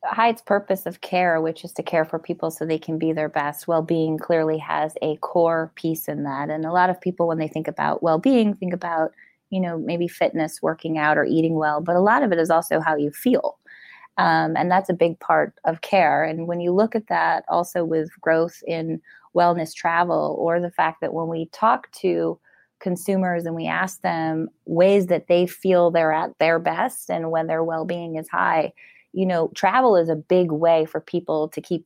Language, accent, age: English, American, 20-39